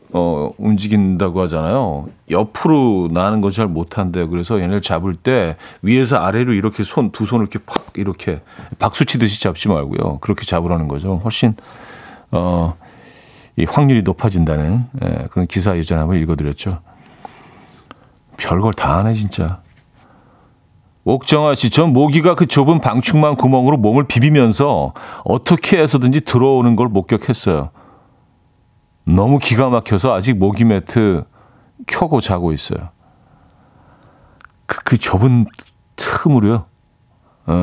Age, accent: 40-59, native